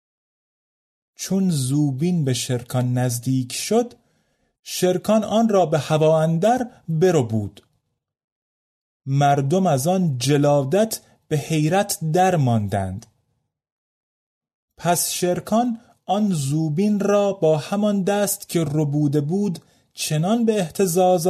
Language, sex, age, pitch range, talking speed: Persian, male, 30-49, 135-185 Hz, 95 wpm